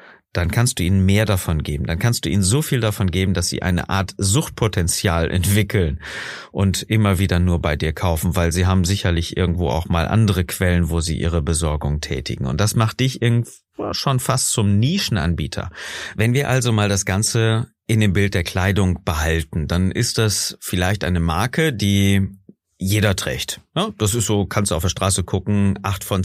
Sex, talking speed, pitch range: male, 190 wpm, 90-110 Hz